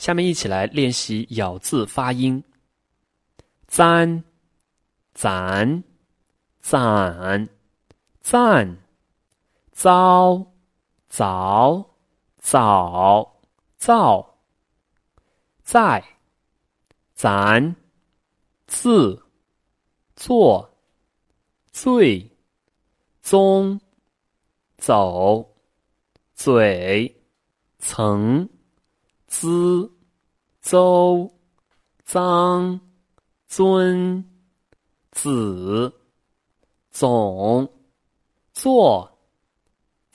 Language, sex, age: Chinese, male, 30-49